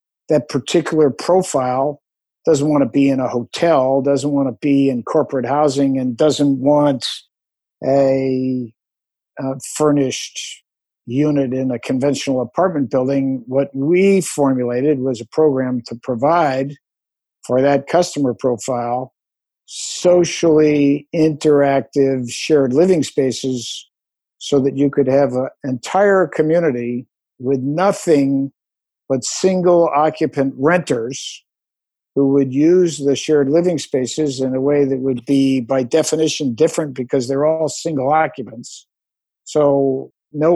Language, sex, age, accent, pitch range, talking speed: English, male, 50-69, American, 135-155 Hz, 120 wpm